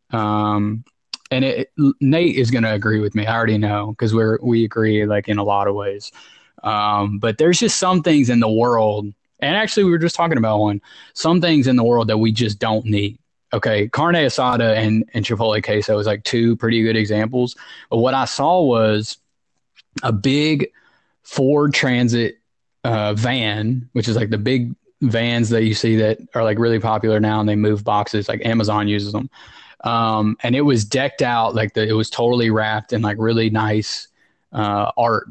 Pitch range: 110-125 Hz